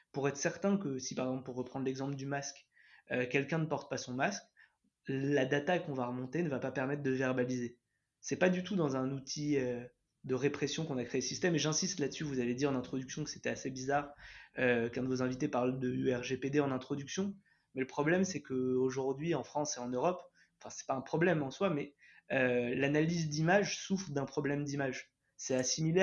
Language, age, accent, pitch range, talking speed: French, 20-39, French, 130-160 Hz, 215 wpm